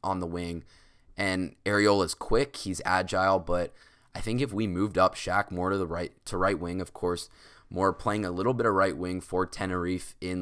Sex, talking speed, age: male, 205 wpm, 20-39